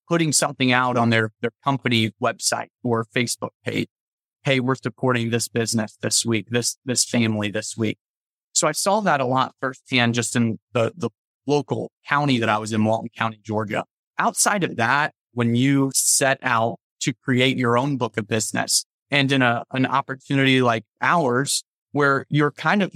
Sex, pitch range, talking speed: male, 115-140 Hz, 180 wpm